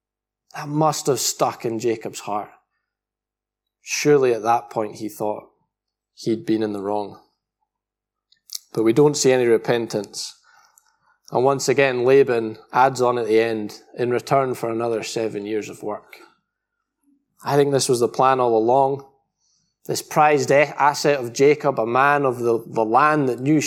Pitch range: 110-150 Hz